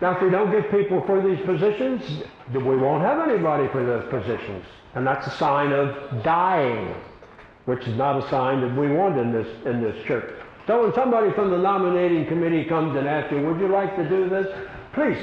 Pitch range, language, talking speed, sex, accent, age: 145-195 Hz, Russian, 210 wpm, male, American, 60-79